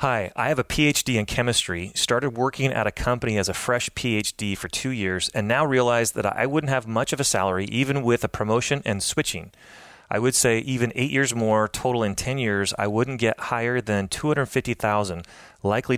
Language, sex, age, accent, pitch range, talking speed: English, male, 30-49, American, 100-125 Hz, 220 wpm